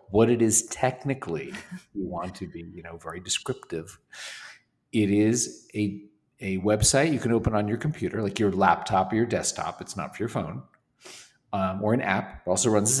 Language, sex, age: English, male, 40-59